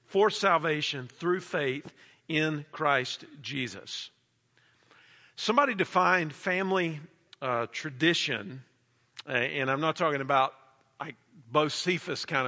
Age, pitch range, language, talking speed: 50-69, 140-180 Hz, English, 100 wpm